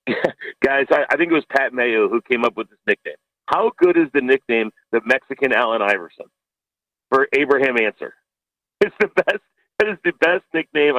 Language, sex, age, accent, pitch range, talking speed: English, male, 40-59, American, 115-145 Hz, 180 wpm